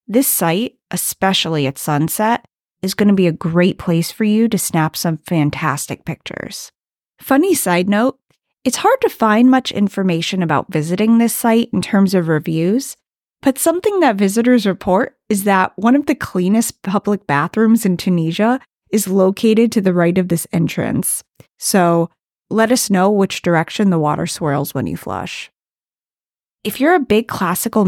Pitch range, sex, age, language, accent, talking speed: 170-225 Hz, female, 30-49, English, American, 165 wpm